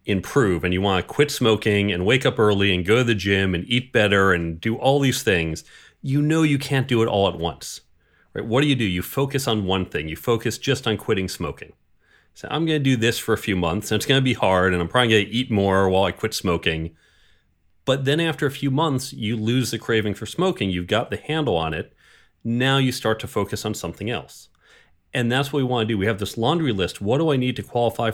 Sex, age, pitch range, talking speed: male, 30-49, 95-130 Hz, 255 wpm